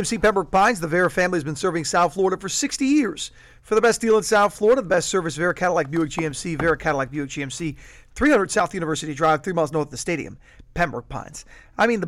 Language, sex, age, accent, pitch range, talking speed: English, male, 40-59, American, 145-190 Hz, 230 wpm